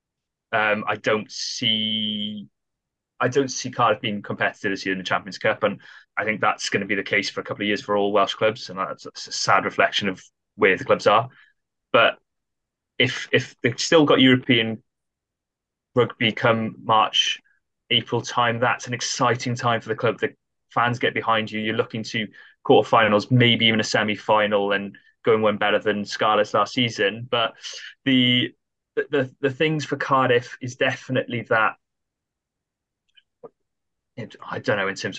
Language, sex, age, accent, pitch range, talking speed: English, male, 20-39, British, 105-125 Hz, 175 wpm